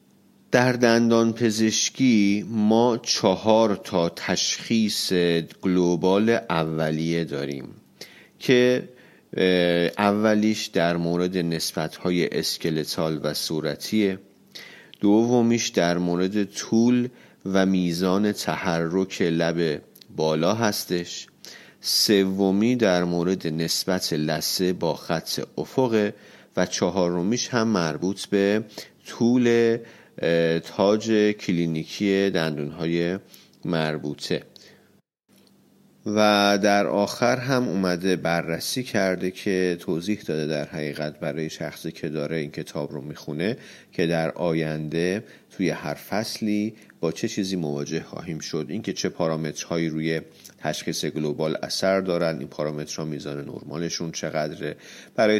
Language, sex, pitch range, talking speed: Persian, male, 80-105 Hz, 100 wpm